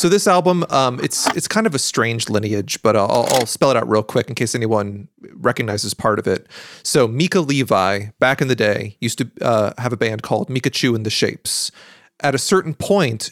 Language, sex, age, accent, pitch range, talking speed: English, male, 30-49, American, 115-165 Hz, 215 wpm